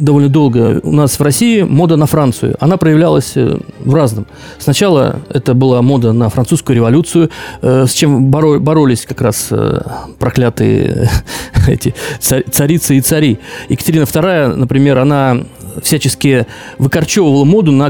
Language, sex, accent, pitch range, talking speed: Russian, male, native, 130-155 Hz, 135 wpm